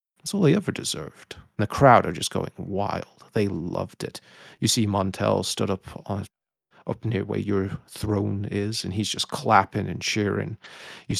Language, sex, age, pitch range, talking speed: English, male, 40-59, 95-110 Hz, 170 wpm